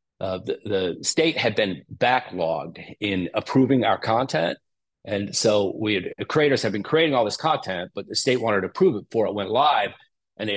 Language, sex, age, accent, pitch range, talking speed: English, male, 40-59, American, 95-130 Hz, 205 wpm